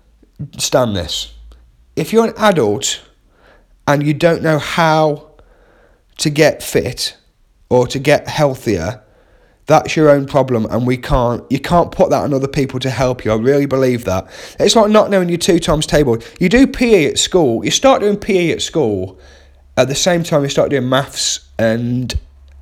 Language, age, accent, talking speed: English, 30-49, British, 180 wpm